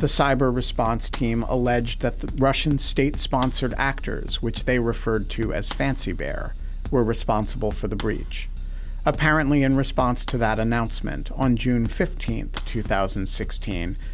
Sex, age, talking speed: male, 50-69, 135 wpm